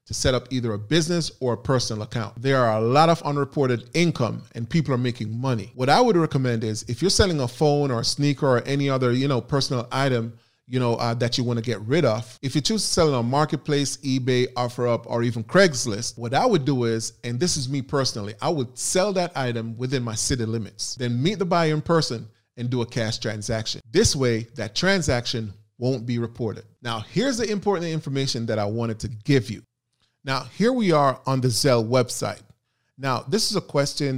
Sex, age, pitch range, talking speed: male, 30-49, 115-140 Hz, 220 wpm